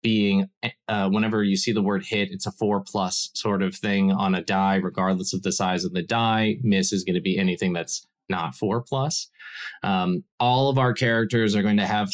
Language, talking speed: English, 215 wpm